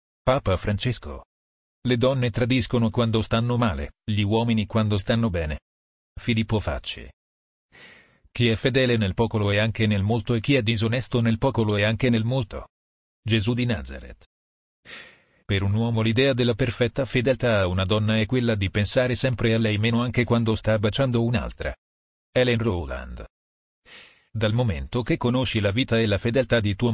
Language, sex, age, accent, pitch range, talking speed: Italian, male, 40-59, native, 100-120 Hz, 165 wpm